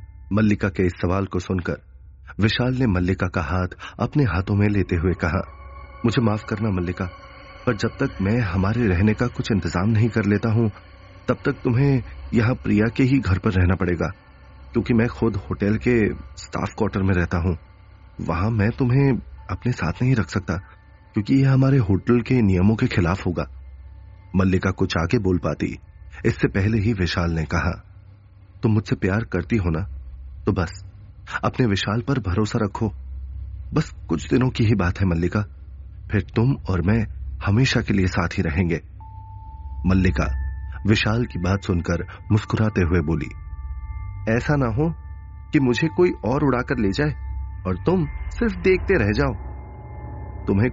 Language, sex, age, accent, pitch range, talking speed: Hindi, male, 30-49, native, 90-115 Hz, 165 wpm